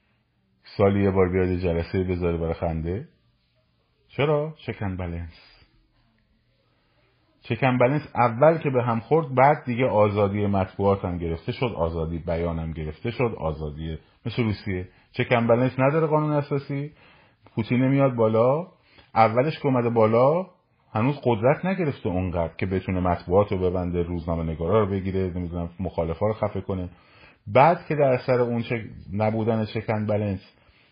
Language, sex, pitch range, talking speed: Persian, male, 95-125 Hz, 140 wpm